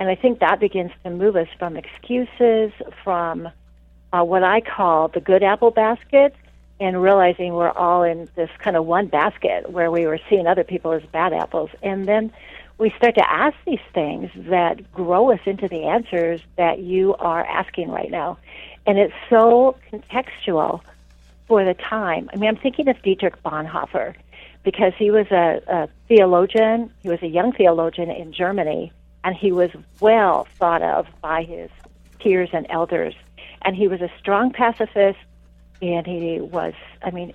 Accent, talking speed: American, 170 wpm